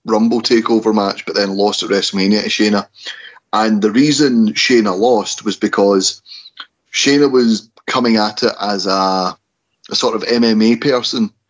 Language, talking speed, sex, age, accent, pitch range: English, 150 wpm, male, 30-49, British, 105-120 Hz